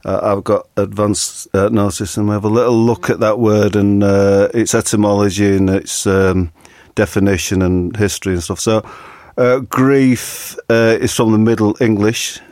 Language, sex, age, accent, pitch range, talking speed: English, male, 40-59, British, 95-110 Hz, 175 wpm